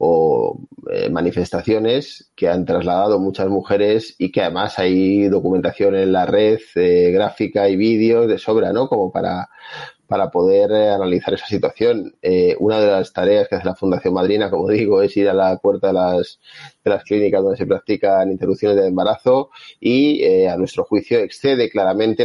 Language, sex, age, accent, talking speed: Spanish, male, 30-49, Spanish, 180 wpm